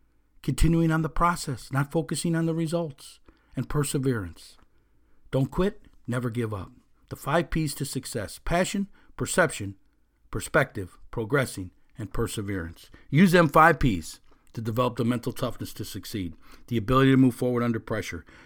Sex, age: male, 50-69